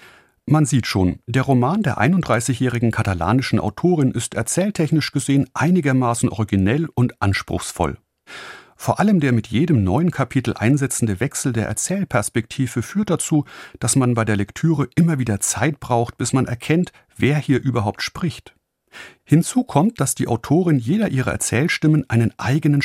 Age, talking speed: 40-59, 145 wpm